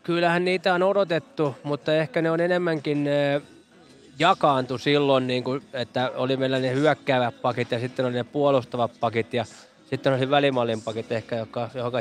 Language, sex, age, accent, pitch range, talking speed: Finnish, male, 20-39, native, 125-150 Hz, 150 wpm